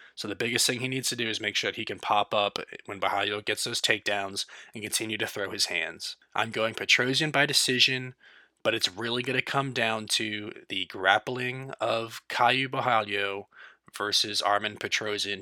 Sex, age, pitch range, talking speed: male, 20-39, 110-135 Hz, 185 wpm